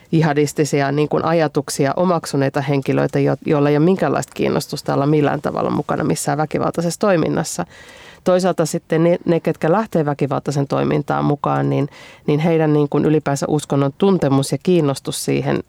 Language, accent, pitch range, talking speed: Finnish, native, 140-165 Hz, 145 wpm